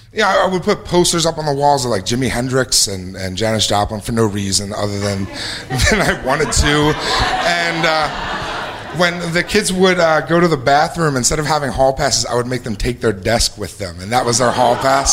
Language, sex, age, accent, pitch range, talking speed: English, male, 30-49, American, 110-175 Hz, 225 wpm